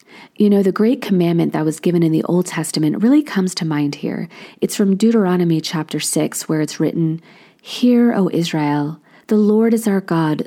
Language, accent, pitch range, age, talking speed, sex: English, American, 165-215 Hz, 40-59, 190 wpm, female